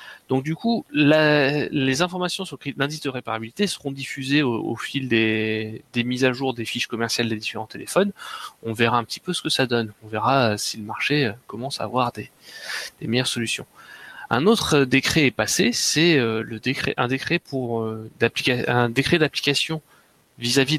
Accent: French